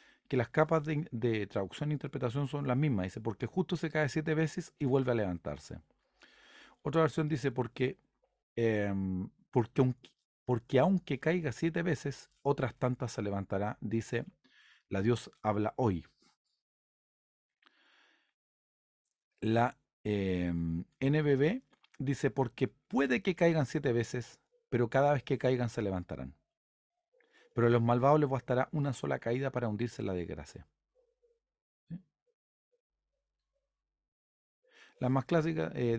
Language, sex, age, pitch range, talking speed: Spanish, male, 40-59, 120-155 Hz, 125 wpm